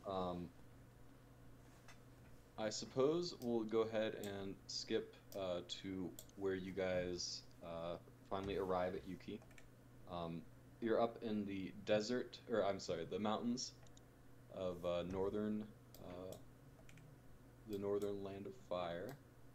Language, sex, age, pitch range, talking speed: English, male, 30-49, 90-125 Hz, 115 wpm